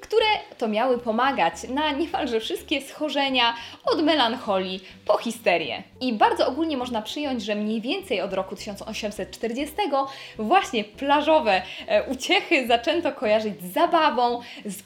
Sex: female